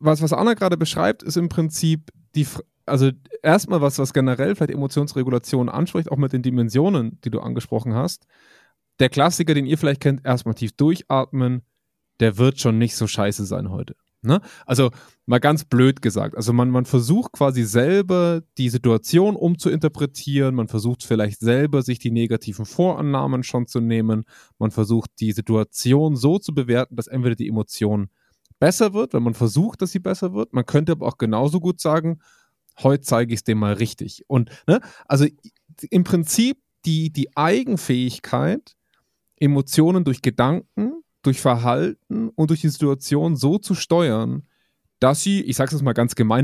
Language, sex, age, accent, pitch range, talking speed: German, male, 20-39, German, 120-160 Hz, 170 wpm